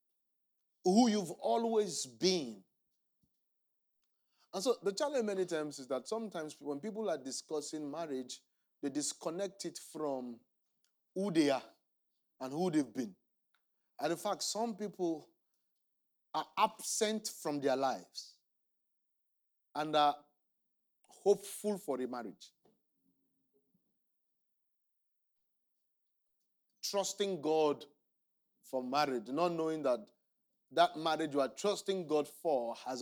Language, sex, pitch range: English, male, 140-195 Hz